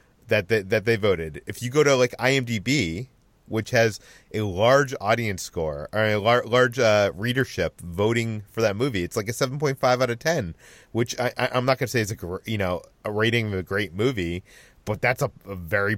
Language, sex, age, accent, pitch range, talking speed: English, male, 30-49, American, 100-130 Hz, 225 wpm